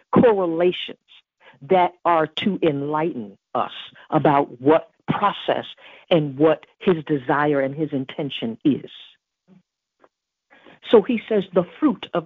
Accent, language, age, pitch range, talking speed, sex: American, English, 50-69, 145-180 Hz, 115 wpm, female